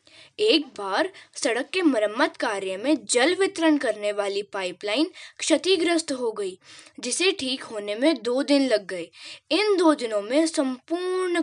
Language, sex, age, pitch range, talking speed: Hindi, female, 10-29, 245-330 Hz, 145 wpm